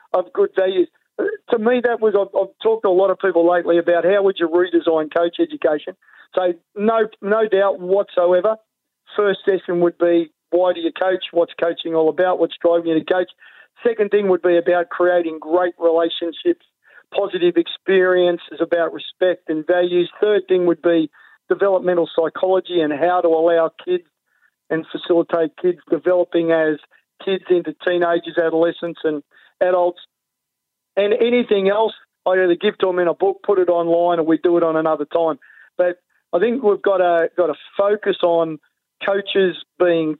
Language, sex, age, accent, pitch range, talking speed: English, male, 50-69, Australian, 170-195 Hz, 170 wpm